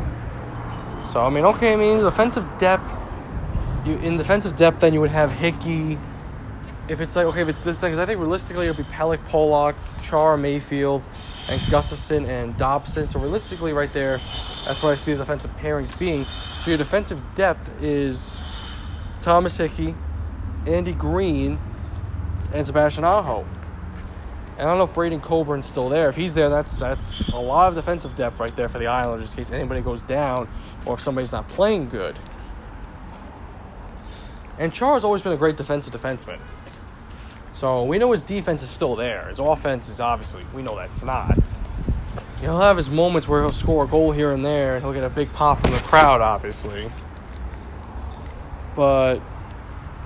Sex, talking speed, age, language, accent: male, 175 wpm, 20-39, English, American